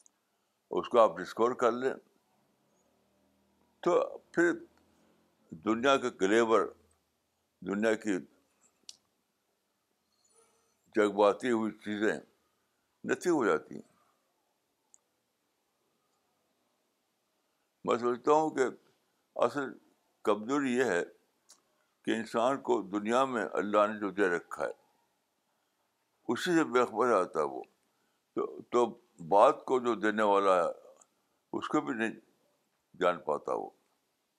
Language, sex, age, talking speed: Urdu, male, 60-79, 100 wpm